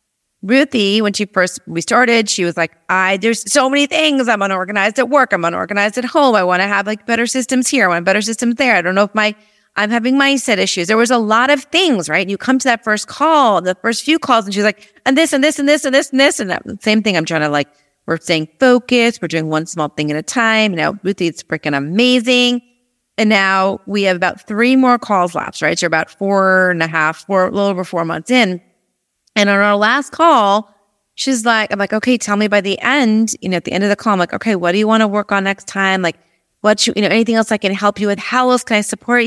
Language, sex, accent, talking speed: English, female, American, 265 wpm